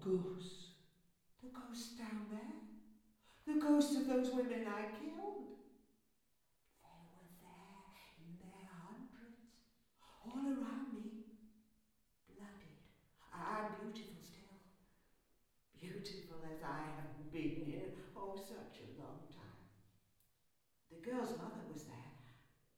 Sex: female